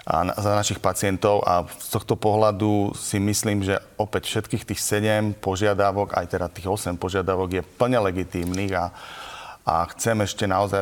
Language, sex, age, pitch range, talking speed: Slovak, male, 30-49, 90-105 Hz, 160 wpm